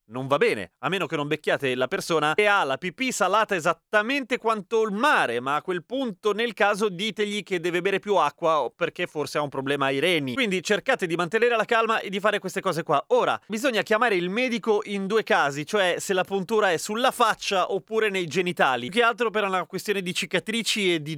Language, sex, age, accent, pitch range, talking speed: Italian, male, 30-49, native, 155-210 Hz, 225 wpm